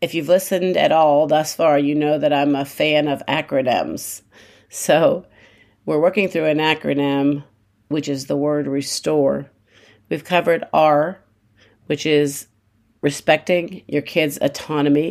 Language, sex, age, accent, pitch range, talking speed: English, female, 50-69, American, 115-160 Hz, 140 wpm